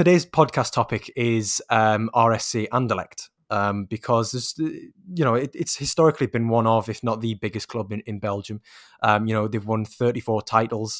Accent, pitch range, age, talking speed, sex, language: British, 105-120 Hz, 20-39, 175 wpm, male, English